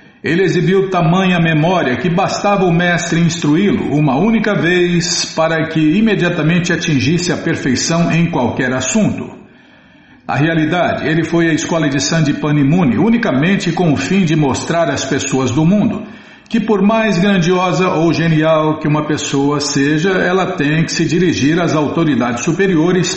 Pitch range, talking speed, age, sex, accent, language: 145-175 Hz, 150 wpm, 50-69, male, Brazilian, Portuguese